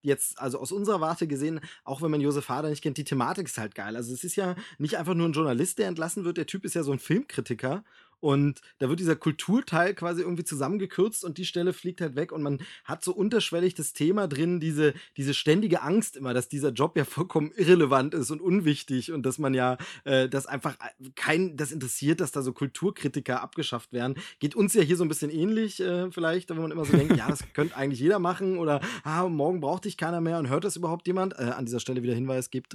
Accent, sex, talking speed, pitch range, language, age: German, male, 235 wpm, 140-180 Hz, German, 20-39